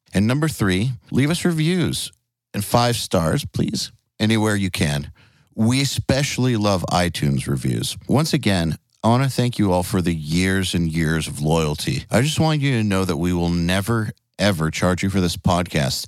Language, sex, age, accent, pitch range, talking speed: English, male, 50-69, American, 90-115 Hz, 185 wpm